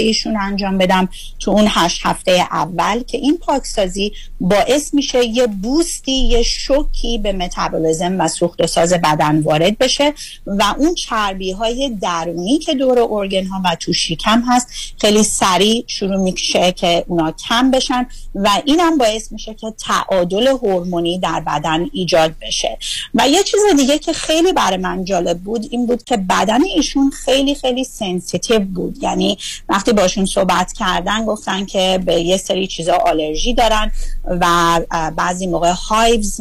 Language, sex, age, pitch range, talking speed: Persian, female, 40-59, 180-255 Hz, 155 wpm